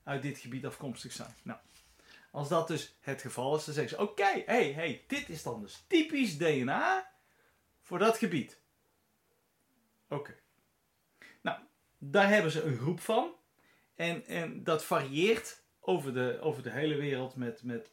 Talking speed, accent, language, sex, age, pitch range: 165 wpm, Dutch, Dutch, male, 40-59, 130-195 Hz